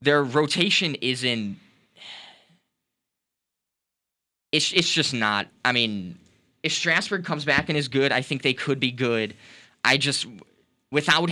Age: 10-29